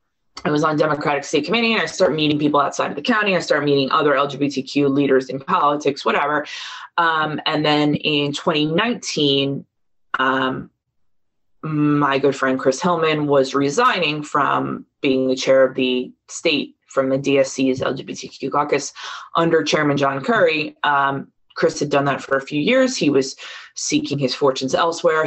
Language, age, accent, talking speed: English, 20-39, American, 160 wpm